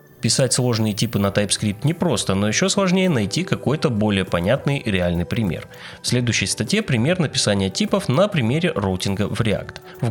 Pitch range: 100-155 Hz